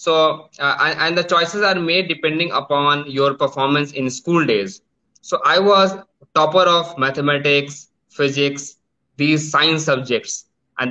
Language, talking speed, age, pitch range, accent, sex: English, 140 wpm, 20-39, 125-155 Hz, Indian, male